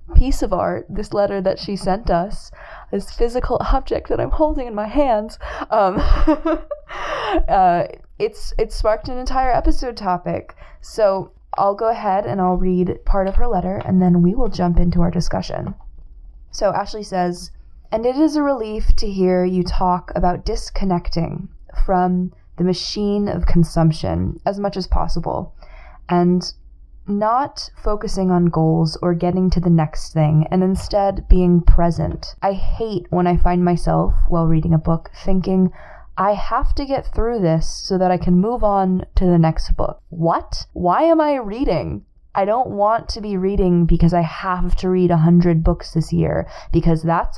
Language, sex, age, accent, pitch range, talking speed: English, female, 20-39, American, 170-205 Hz, 170 wpm